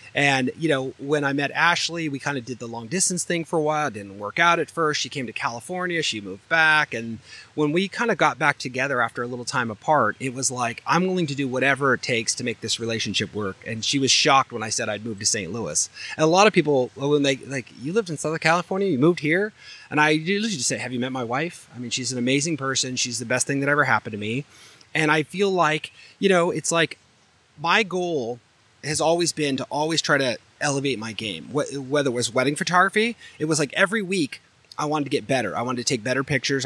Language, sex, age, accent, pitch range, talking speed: English, male, 30-49, American, 125-160 Hz, 250 wpm